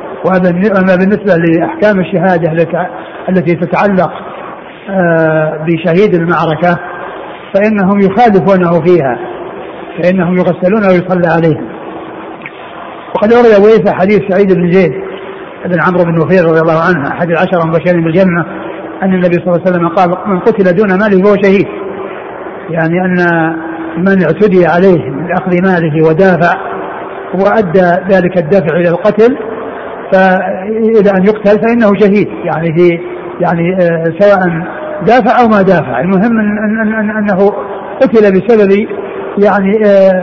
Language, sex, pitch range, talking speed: Arabic, male, 175-200 Hz, 120 wpm